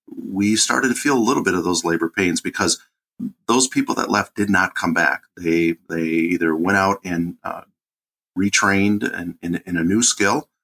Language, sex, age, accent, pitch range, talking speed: English, male, 40-59, American, 85-100 Hz, 180 wpm